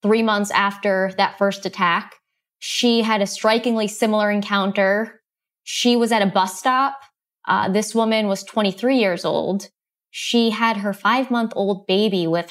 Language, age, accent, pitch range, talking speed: English, 20-39, American, 185-215 Hz, 150 wpm